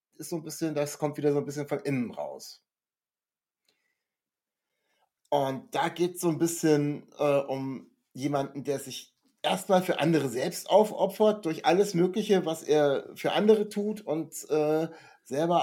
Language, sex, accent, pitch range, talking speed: German, male, German, 130-160 Hz, 155 wpm